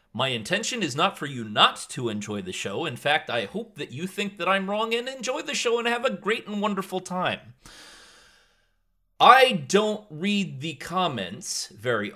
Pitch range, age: 140-200 Hz, 30-49